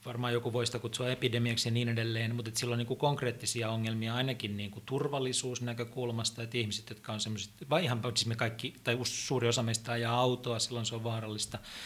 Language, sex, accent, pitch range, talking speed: Finnish, male, native, 110-130 Hz, 180 wpm